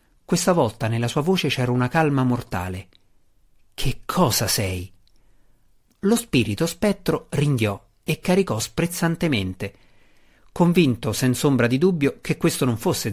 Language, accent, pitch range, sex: Italian, native, 110-160 Hz, male